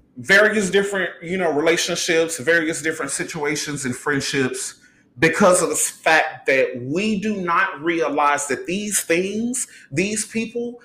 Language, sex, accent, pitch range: English, male, American, 165-275 Hz